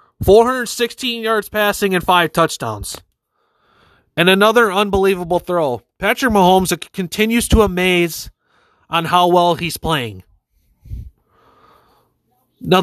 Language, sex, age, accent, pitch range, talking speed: English, male, 30-49, American, 150-205 Hz, 100 wpm